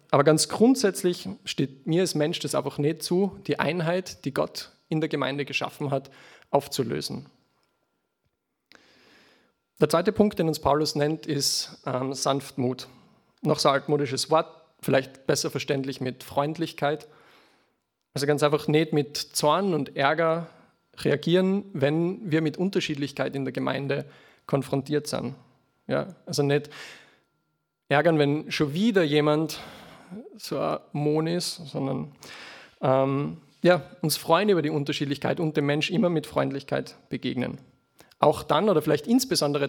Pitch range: 140-165 Hz